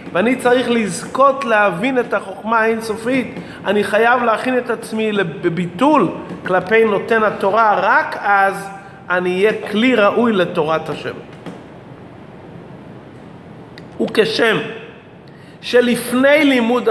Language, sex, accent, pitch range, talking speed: Hebrew, male, native, 190-250 Hz, 95 wpm